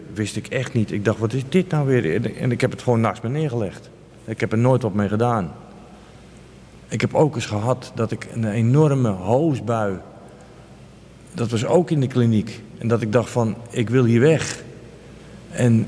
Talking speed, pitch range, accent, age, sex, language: 195 wpm, 110-130 Hz, Dutch, 50-69, male, Dutch